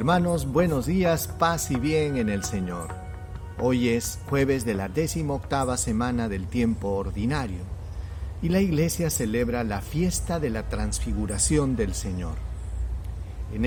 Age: 50-69